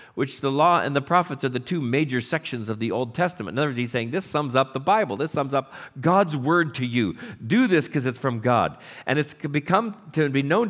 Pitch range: 120-165 Hz